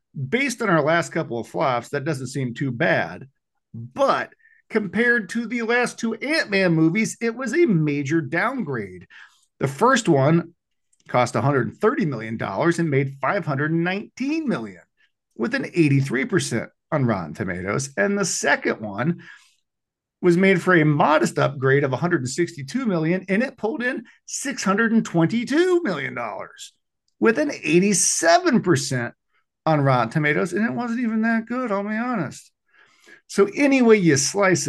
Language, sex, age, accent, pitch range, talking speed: English, male, 50-69, American, 130-205 Hz, 140 wpm